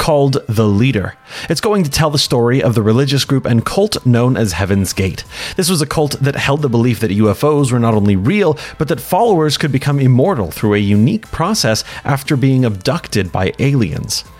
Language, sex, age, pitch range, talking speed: English, male, 30-49, 110-150 Hz, 200 wpm